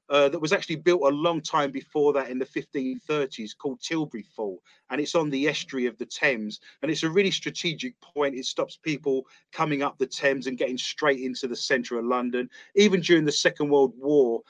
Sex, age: male, 30-49